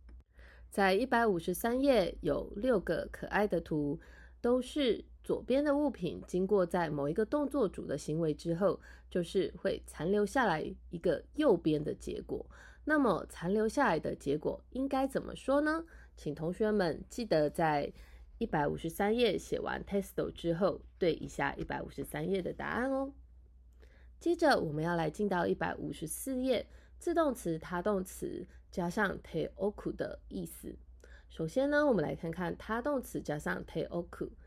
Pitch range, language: 155-245 Hz, Japanese